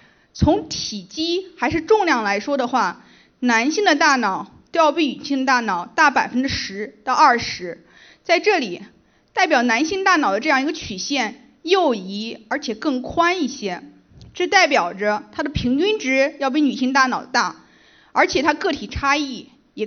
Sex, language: female, Chinese